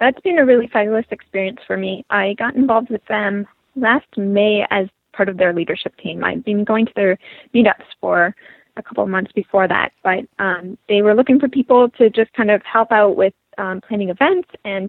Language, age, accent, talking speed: English, 20-39, American, 210 wpm